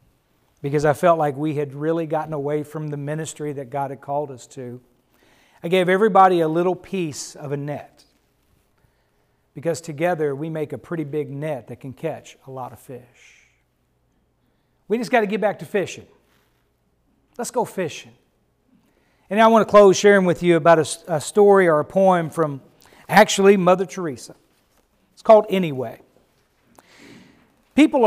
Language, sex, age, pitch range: English, male, 40-59, 145-215 Hz